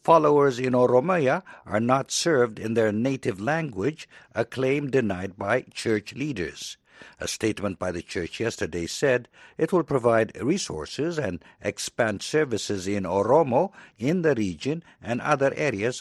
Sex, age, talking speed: male, 60-79, 140 wpm